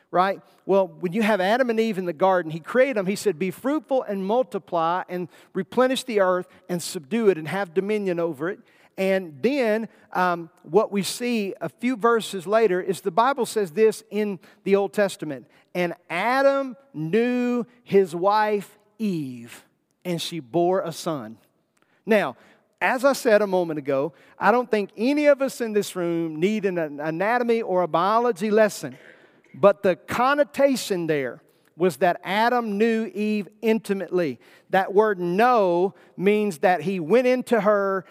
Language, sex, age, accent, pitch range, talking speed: English, male, 50-69, American, 180-225 Hz, 165 wpm